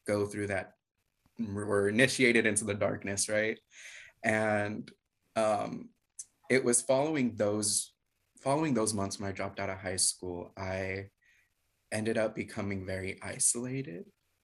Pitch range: 100-115 Hz